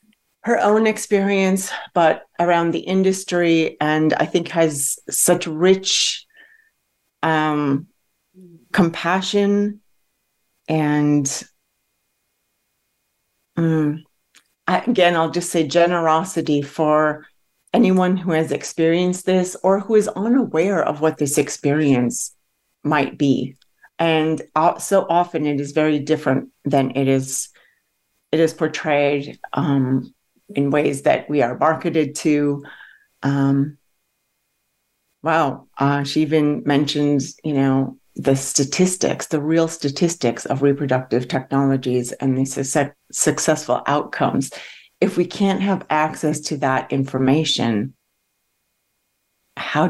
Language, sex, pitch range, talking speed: English, female, 140-175 Hz, 105 wpm